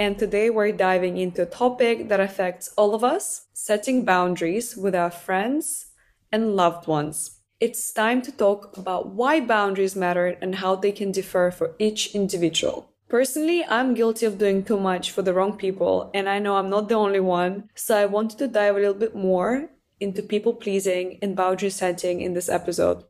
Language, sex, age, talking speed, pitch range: English, female, 20-39, 190 wpm, 185-225 Hz